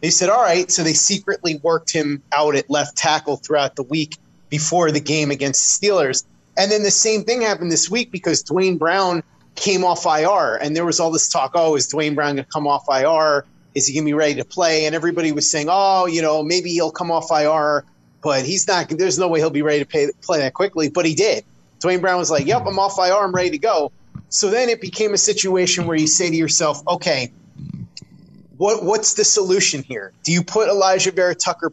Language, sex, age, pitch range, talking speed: English, male, 30-49, 150-185 Hz, 230 wpm